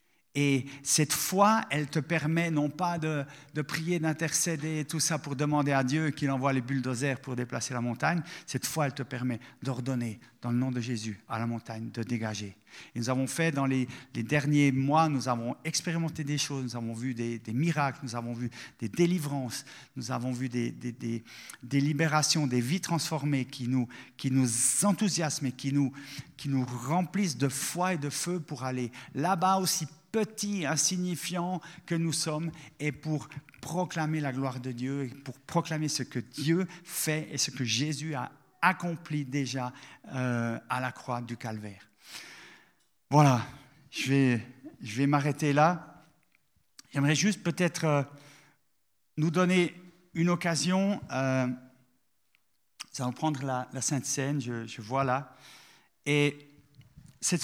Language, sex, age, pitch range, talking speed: French, male, 50-69, 125-155 Hz, 165 wpm